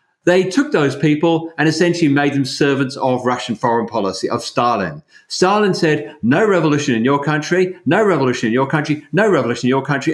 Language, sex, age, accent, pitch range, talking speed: English, male, 50-69, British, 135-185 Hz, 190 wpm